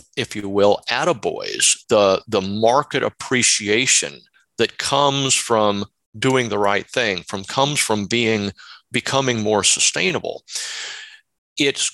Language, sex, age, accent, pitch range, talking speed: English, male, 40-59, American, 105-135 Hz, 115 wpm